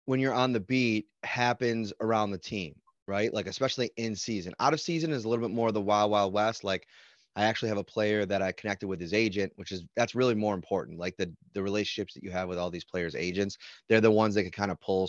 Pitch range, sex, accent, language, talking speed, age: 95-115 Hz, male, American, English, 260 wpm, 30-49